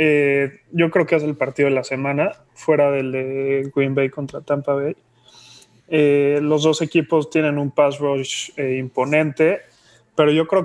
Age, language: 20-39, Spanish